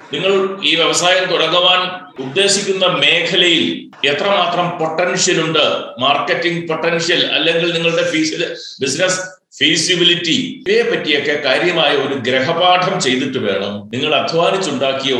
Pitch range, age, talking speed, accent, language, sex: 140-175 Hz, 60-79, 100 wpm, native, Malayalam, male